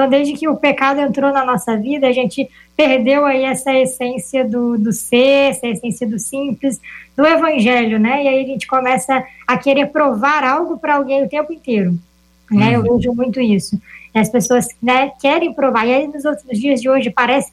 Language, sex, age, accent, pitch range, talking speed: Portuguese, male, 20-39, Brazilian, 250-285 Hz, 200 wpm